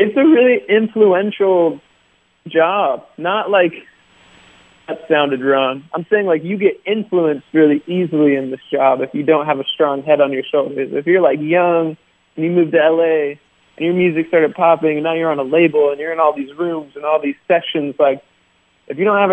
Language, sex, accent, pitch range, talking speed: English, male, American, 140-165 Hz, 205 wpm